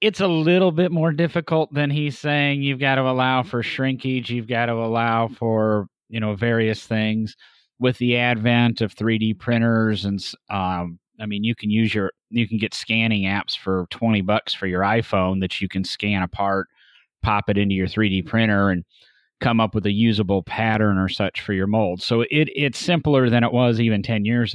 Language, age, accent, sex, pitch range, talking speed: English, 30-49, American, male, 105-130 Hz, 200 wpm